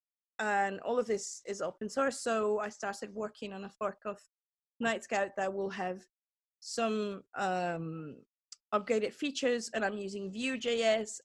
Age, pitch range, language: 20-39, 205-245 Hz, English